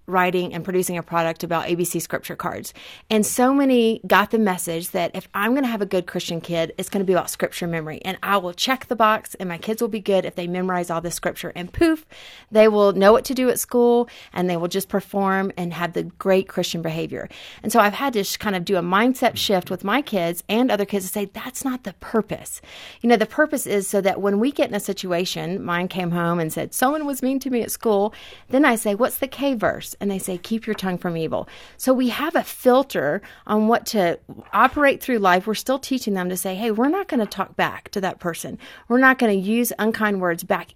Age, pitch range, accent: 30-49, 175-230 Hz, American